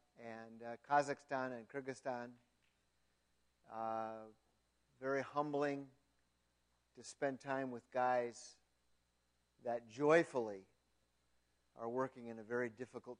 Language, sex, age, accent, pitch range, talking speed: English, male, 50-69, American, 105-140 Hz, 95 wpm